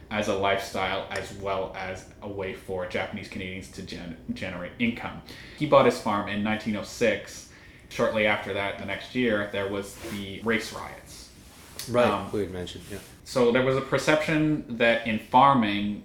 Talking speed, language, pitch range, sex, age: 155 wpm, English, 95-110 Hz, male, 30-49